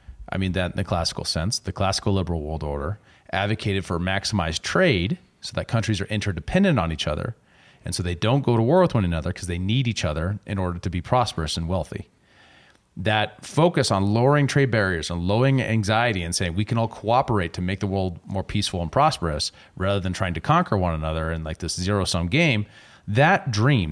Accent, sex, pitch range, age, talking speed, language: American, male, 90-115 Hz, 30-49, 210 wpm, English